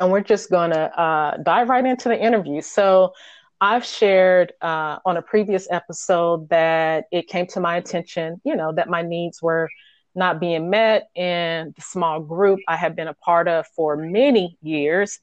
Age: 30-49